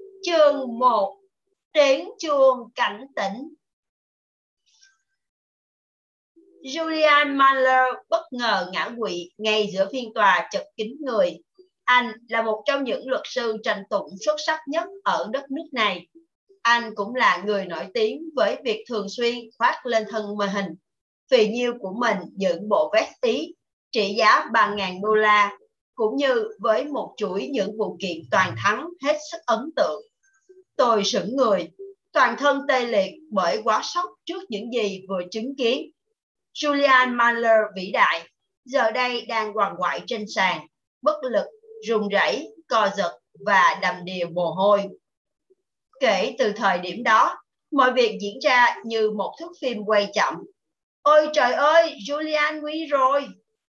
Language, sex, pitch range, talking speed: Vietnamese, female, 210-315 Hz, 150 wpm